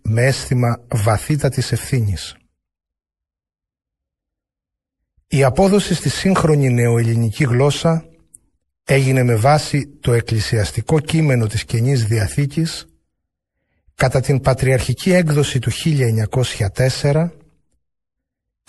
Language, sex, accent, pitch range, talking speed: Greek, male, native, 110-140 Hz, 80 wpm